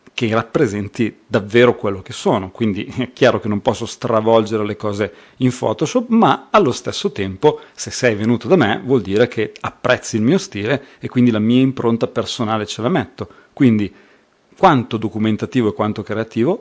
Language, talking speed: Italian, 175 wpm